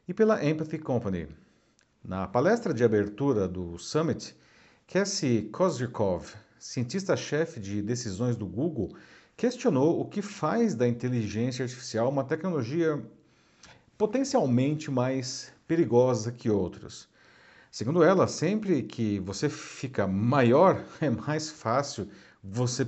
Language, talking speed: Portuguese, 110 wpm